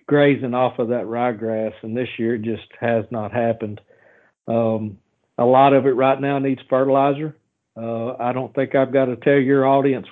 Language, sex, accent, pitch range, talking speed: English, male, American, 120-145 Hz, 190 wpm